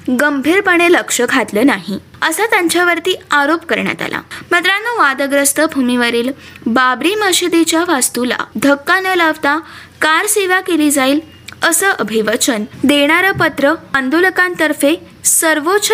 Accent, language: native, Marathi